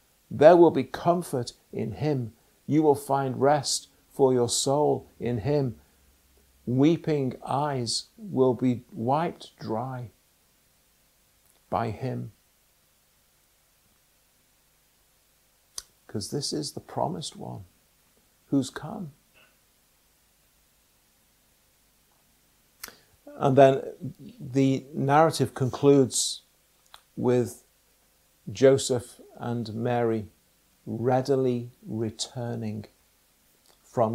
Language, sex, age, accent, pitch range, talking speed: English, male, 50-69, British, 110-135 Hz, 75 wpm